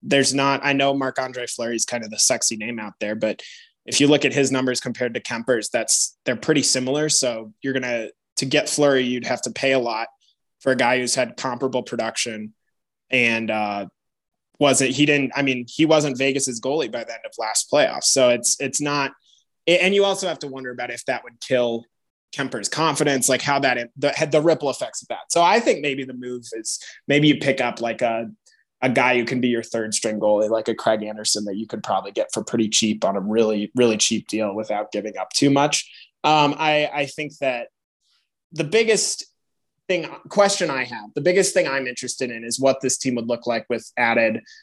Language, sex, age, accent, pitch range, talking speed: English, male, 20-39, American, 120-145 Hz, 220 wpm